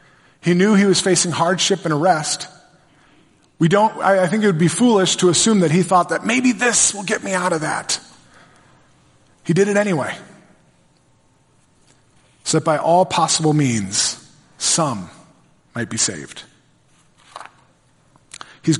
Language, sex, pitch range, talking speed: English, male, 130-180 Hz, 145 wpm